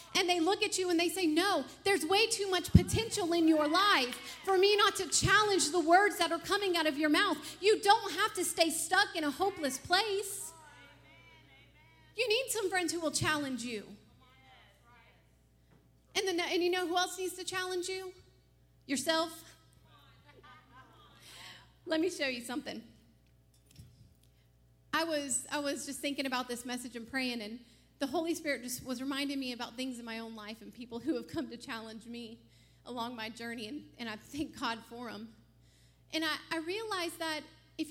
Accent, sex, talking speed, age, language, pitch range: American, female, 180 wpm, 30-49, English, 230-345 Hz